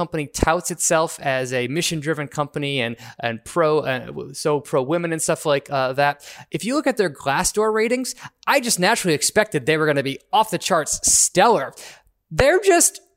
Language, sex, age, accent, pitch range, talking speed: English, male, 20-39, American, 150-190 Hz, 175 wpm